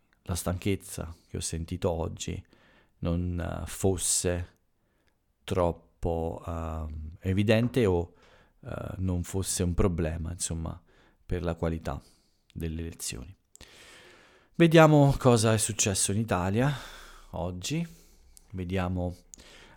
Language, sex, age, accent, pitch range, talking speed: Italian, male, 40-59, native, 85-105 Hz, 90 wpm